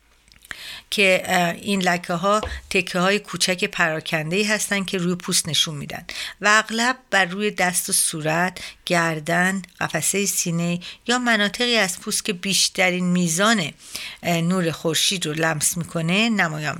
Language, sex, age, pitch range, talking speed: Persian, female, 50-69, 170-200 Hz, 135 wpm